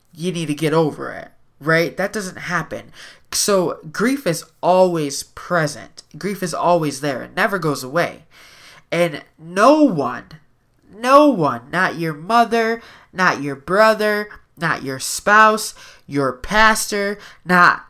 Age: 20-39